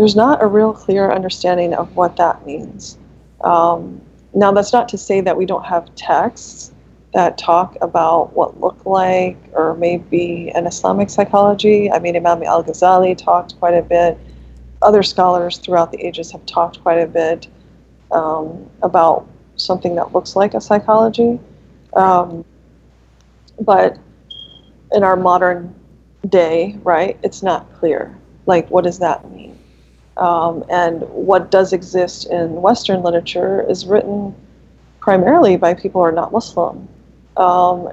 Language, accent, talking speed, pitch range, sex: English, American, 145 wpm, 170-190 Hz, female